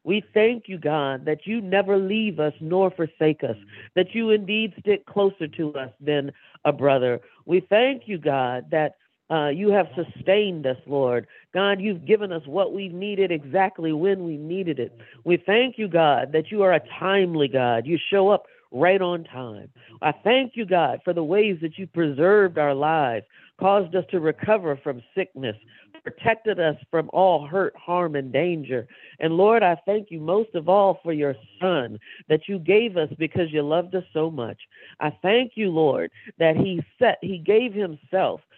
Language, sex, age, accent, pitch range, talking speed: English, female, 50-69, American, 150-200 Hz, 185 wpm